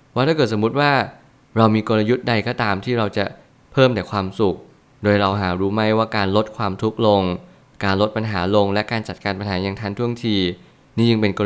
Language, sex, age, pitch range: Thai, male, 20-39, 100-120 Hz